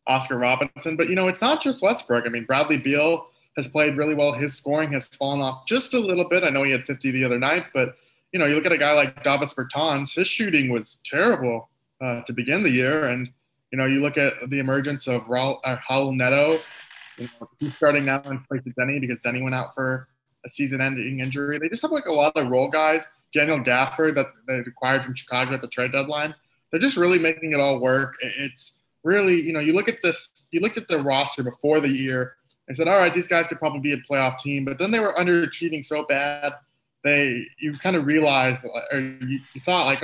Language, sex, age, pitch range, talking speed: English, male, 20-39, 135-165 Hz, 230 wpm